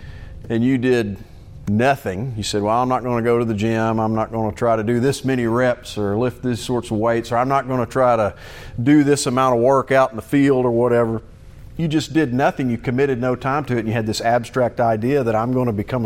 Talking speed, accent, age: 245 wpm, American, 50-69